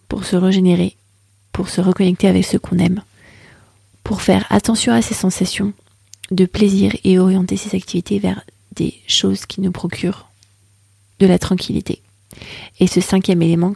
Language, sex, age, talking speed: French, female, 30-49, 155 wpm